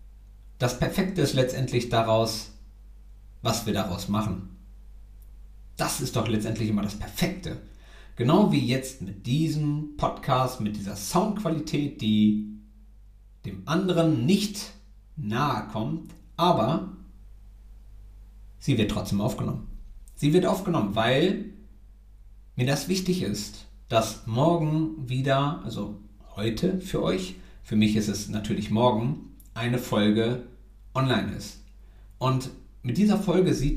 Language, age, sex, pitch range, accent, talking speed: German, 50-69, male, 105-155 Hz, German, 115 wpm